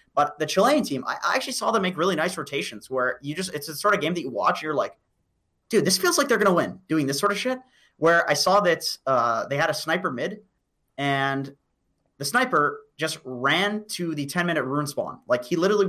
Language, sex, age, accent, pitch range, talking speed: English, male, 30-49, American, 135-180 Hz, 230 wpm